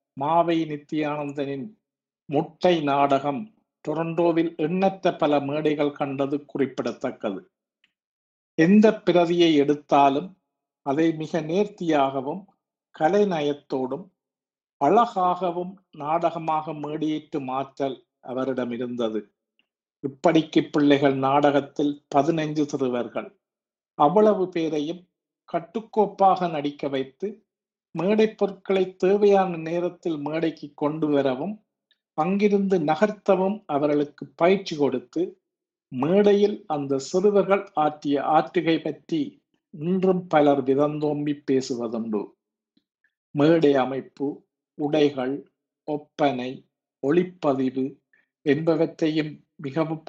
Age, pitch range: 50-69, 140-185 Hz